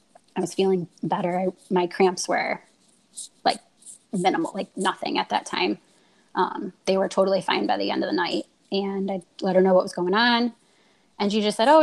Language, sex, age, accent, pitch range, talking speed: English, female, 20-39, American, 185-215 Hz, 200 wpm